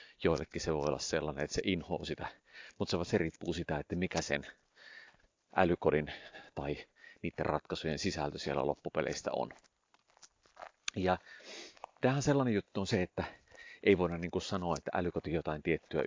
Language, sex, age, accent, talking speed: Finnish, male, 30-49, native, 150 wpm